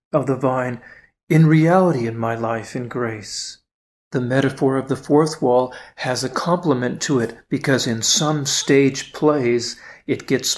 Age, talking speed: 40-59, 160 wpm